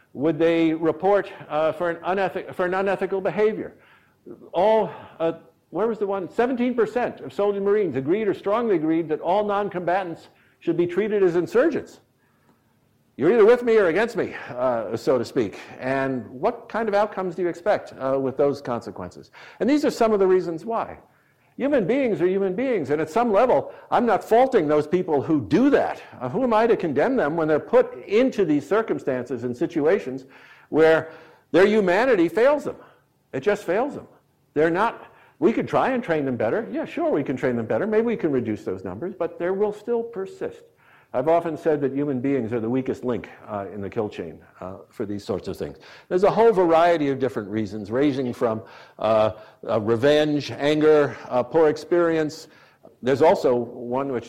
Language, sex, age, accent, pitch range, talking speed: English, male, 60-79, American, 125-200 Hz, 190 wpm